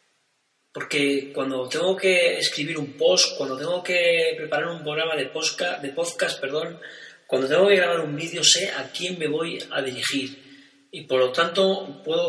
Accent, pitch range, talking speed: Spanish, 140-185 Hz, 175 wpm